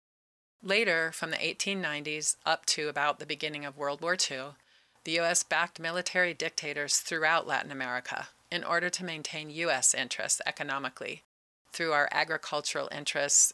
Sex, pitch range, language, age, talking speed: female, 145-170 Hz, English, 40-59, 140 wpm